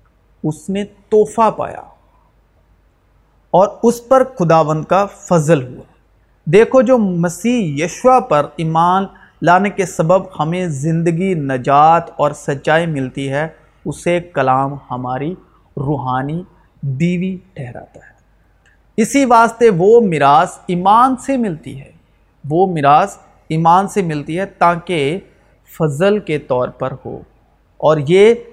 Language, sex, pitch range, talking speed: Urdu, male, 140-195 Hz, 120 wpm